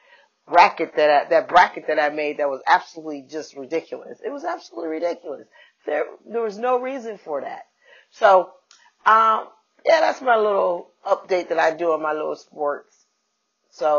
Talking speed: 165 wpm